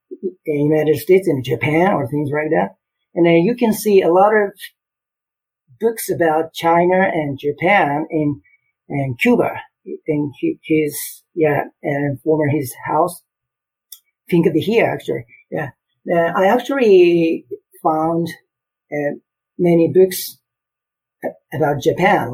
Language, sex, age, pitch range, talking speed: English, male, 50-69, 145-180 Hz, 125 wpm